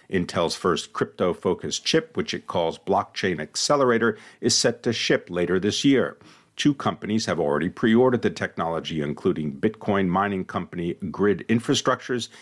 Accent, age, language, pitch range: American, 50-69, English, 95-125 Hz